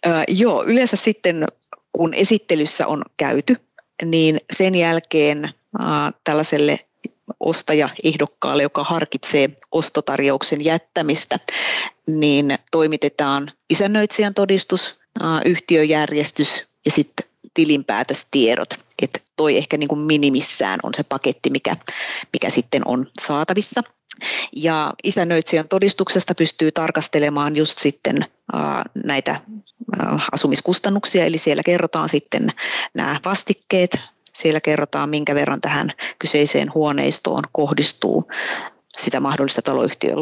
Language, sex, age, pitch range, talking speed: Finnish, female, 30-49, 150-180 Hz, 95 wpm